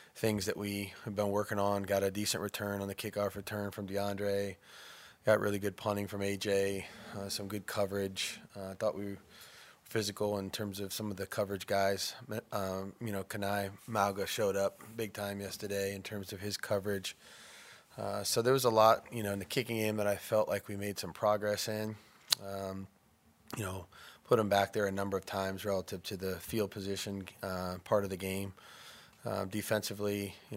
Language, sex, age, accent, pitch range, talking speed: English, male, 20-39, American, 95-105 Hz, 200 wpm